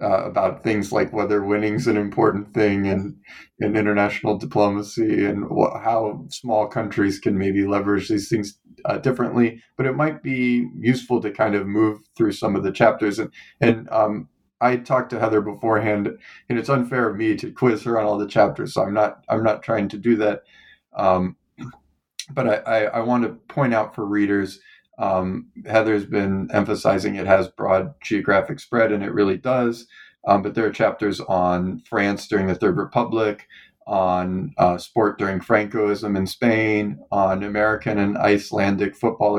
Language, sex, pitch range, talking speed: English, male, 100-115 Hz, 175 wpm